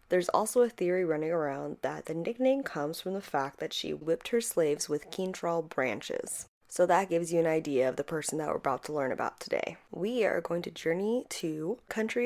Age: 20-39